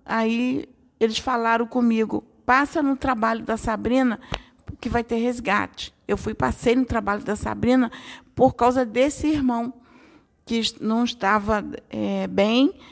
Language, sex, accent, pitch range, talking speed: English, female, Brazilian, 210-250 Hz, 135 wpm